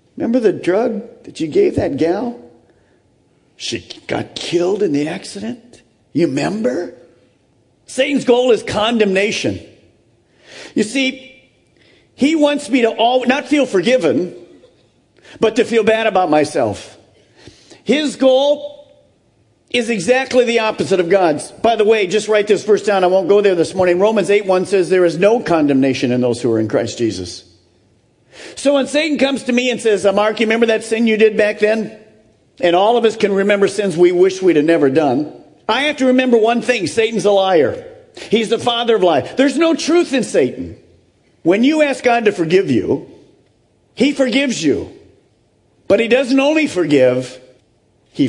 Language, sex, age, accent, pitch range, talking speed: English, male, 50-69, American, 190-265 Hz, 175 wpm